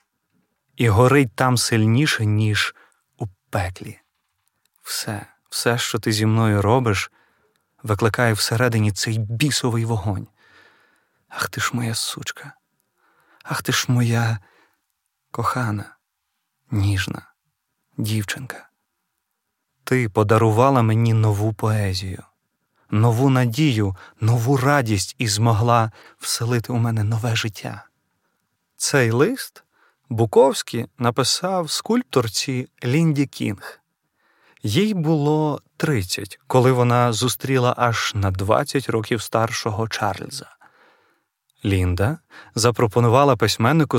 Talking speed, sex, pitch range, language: 95 wpm, male, 105-130 Hz, Ukrainian